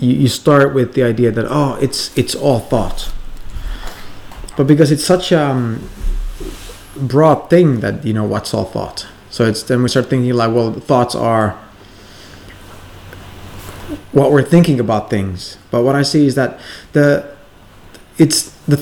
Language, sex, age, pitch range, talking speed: English, male, 30-49, 100-140 Hz, 155 wpm